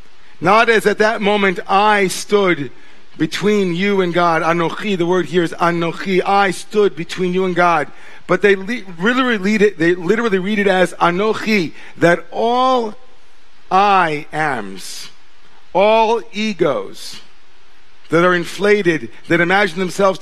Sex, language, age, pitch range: male, English, 50-69, 145-190 Hz